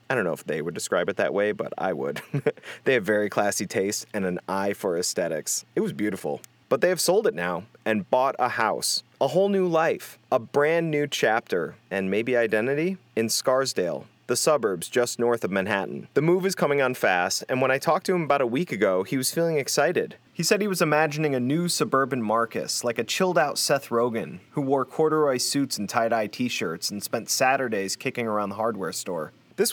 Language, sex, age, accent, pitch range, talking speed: English, male, 30-49, American, 105-150 Hz, 215 wpm